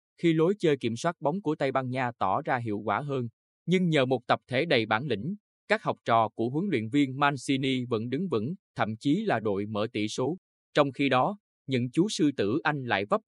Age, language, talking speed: 20-39, Vietnamese, 230 wpm